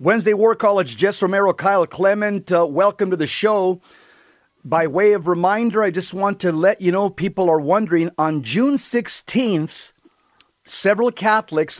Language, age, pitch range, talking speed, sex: English, 40-59, 160-205 Hz, 160 wpm, male